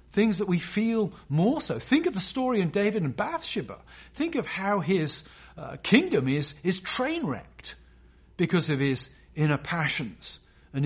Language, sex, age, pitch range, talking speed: English, male, 40-59, 140-205 Hz, 165 wpm